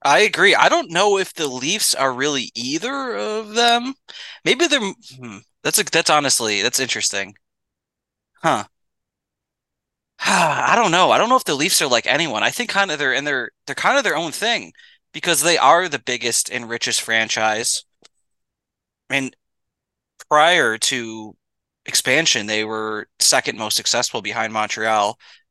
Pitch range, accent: 115-175 Hz, American